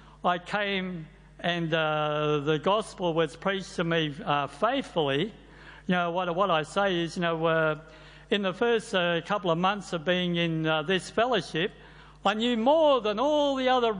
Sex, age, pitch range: male, 60-79, 165-215 Hz